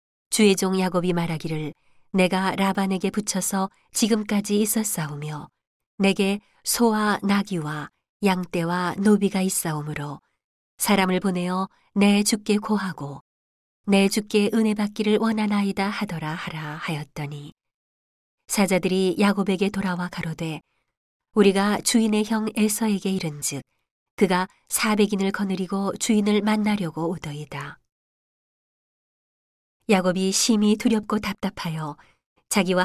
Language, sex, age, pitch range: Korean, female, 40-59, 165-205 Hz